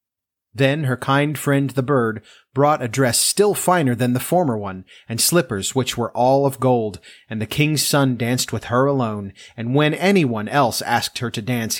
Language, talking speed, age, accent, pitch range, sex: English, 195 wpm, 30-49, American, 115-145 Hz, male